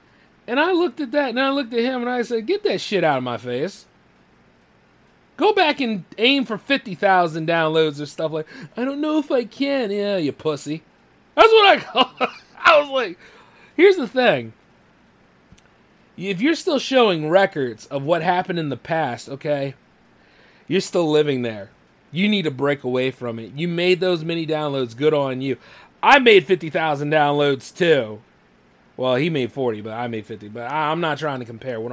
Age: 30-49